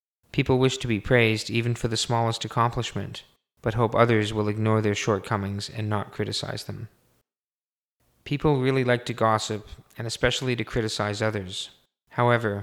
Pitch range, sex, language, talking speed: 105-120 Hz, male, English, 150 wpm